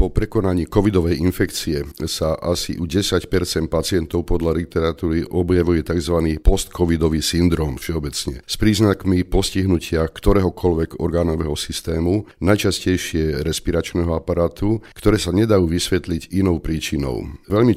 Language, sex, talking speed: Slovak, male, 110 wpm